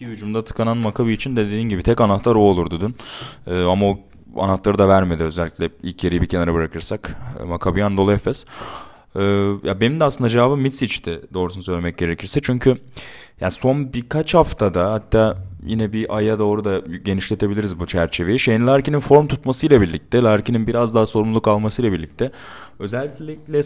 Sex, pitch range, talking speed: male, 90-120 Hz, 160 wpm